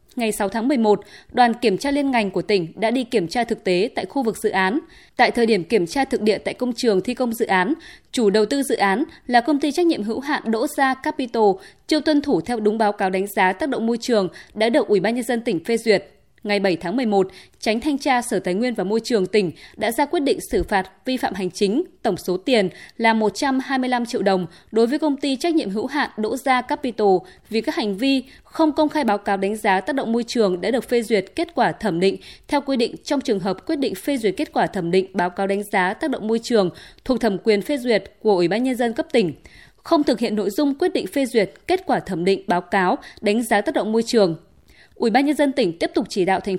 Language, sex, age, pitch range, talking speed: Vietnamese, female, 20-39, 200-270 Hz, 260 wpm